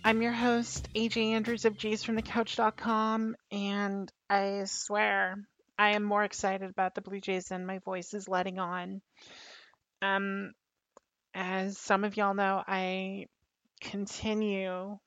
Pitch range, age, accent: 190-210 Hz, 30-49, American